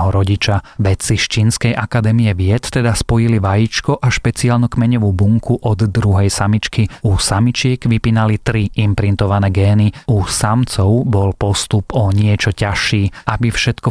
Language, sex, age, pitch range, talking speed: Slovak, male, 30-49, 100-120 Hz, 135 wpm